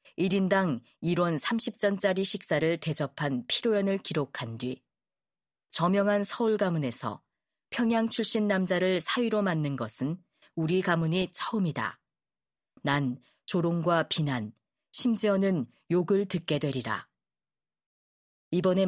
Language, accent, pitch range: Korean, native, 145-200 Hz